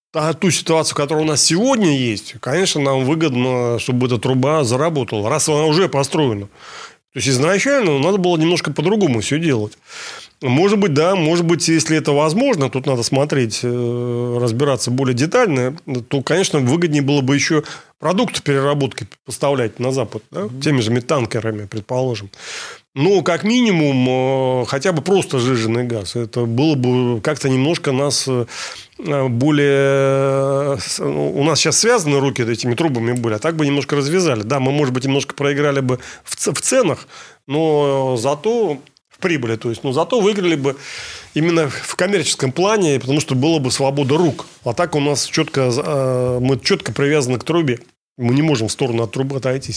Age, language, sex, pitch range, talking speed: 30-49, Russian, male, 125-155 Hz, 160 wpm